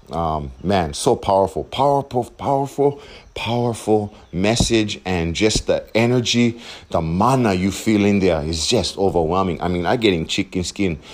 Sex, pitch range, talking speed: male, 85-115 Hz, 145 wpm